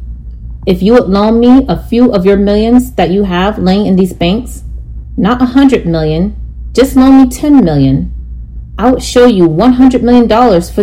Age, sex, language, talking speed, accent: 30-49, female, English, 185 wpm, American